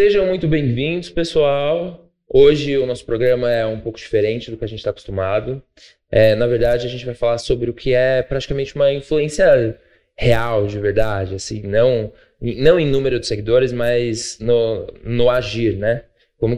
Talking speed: 165 wpm